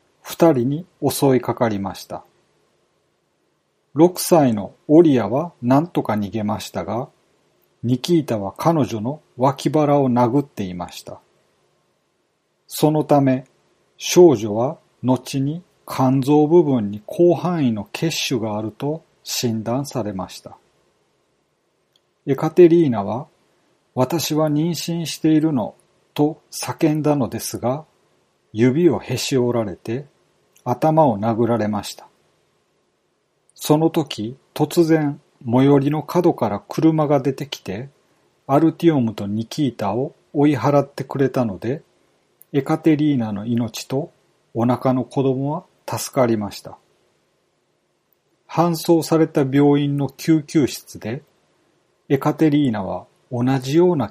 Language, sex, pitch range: Japanese, male, 115-155 Hz